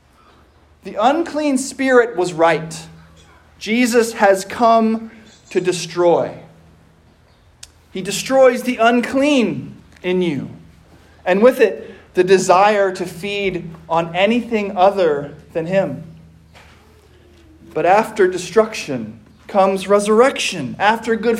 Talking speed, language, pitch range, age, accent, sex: 100 wpm, English, 180-255 Hz, 20-39, American, male